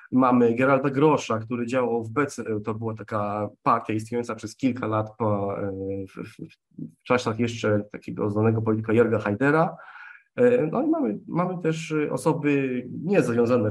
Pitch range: 110-130 Hz